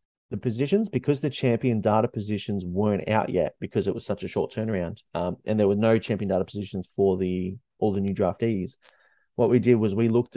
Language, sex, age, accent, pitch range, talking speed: English, male, 30-49, Australian, 95-110 Hz, 215 wpm